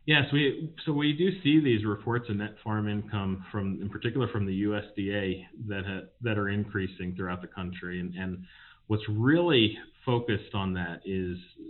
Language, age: English, 30-49